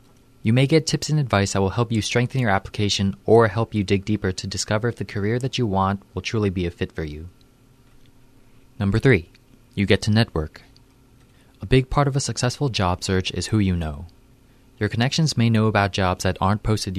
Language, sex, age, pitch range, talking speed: English, male, 20-39, 95-125 Hz, 210 wpm